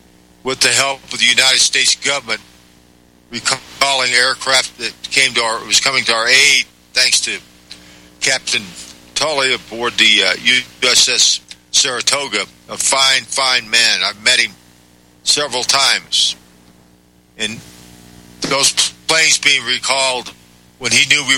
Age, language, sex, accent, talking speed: 50-69, English, male, American, 130 wpm